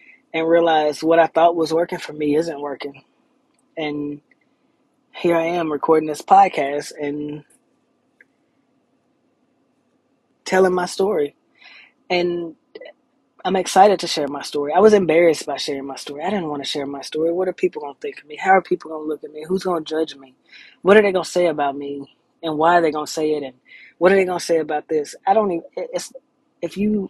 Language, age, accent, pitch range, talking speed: English, 20-39, American, 150-205 Hz, 195 wpm